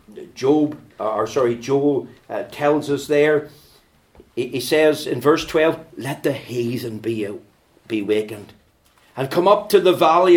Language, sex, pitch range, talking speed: English, male, 125-175 Hz, 155 wpm